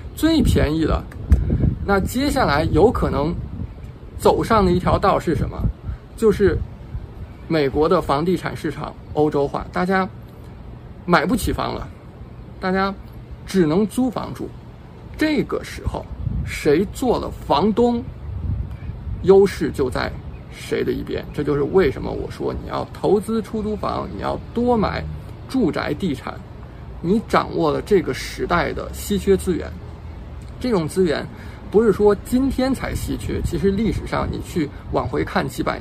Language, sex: Chinese, male